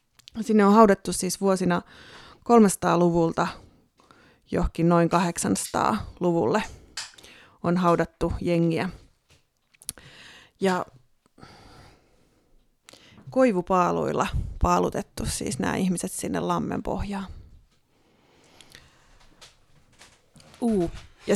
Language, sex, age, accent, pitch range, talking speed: Finnish, female, 30-49, native, 165-195 Hz, 65 wpm